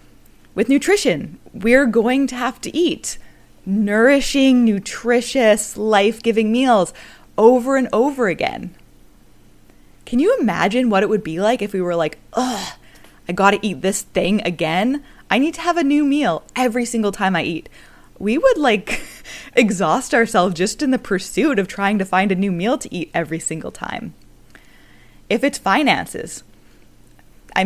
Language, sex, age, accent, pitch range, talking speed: English, female, 20-39, American, 180-255 Hz, 160 wpm